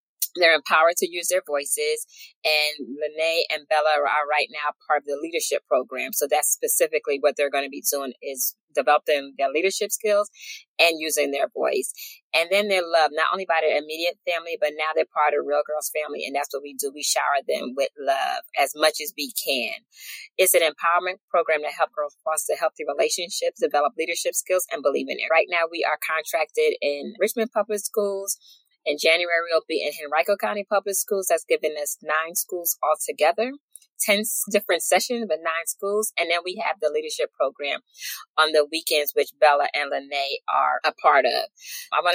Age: 20-39